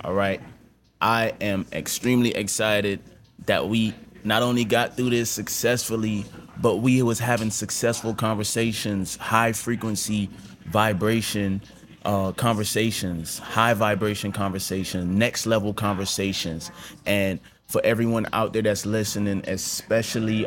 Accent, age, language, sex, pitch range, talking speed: American, 20-39, English, male, 100-120 Hz, 110 wpm